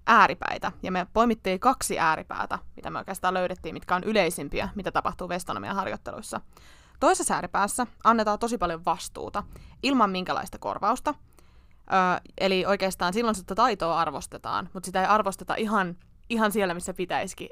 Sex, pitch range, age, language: female, 180-220 Hz, 20-39, Finnish